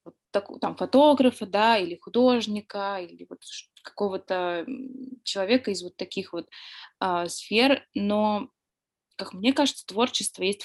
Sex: female